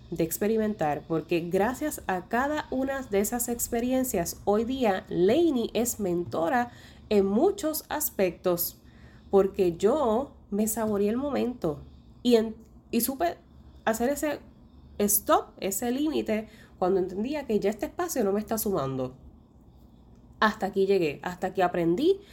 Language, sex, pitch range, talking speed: Spanish, female, 170-225 Hz, 130 wpm